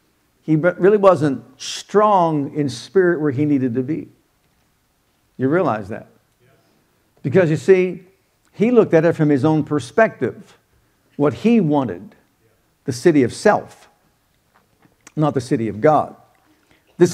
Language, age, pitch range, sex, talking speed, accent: English, 60-79, 140-180 Hz, male, 135 wpm, American